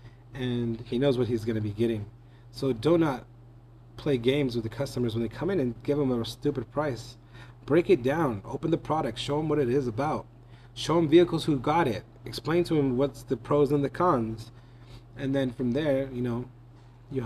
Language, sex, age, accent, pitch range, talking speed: English, male, 30-49, American, 120-140 Hz, 210 wpm